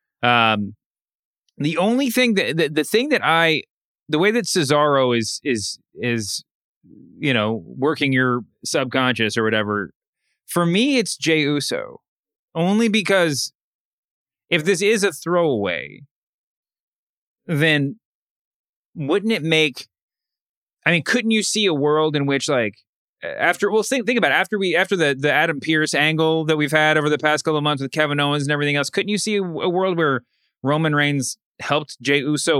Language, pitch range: English, 130-170 Hz